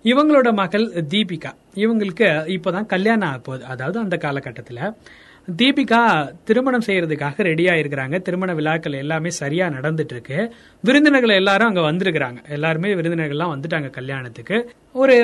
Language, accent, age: Tamil, native, 30-49